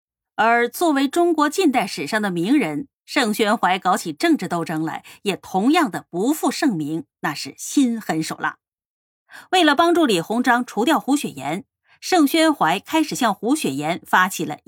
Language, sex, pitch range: Chinese, female, 175-290 Hz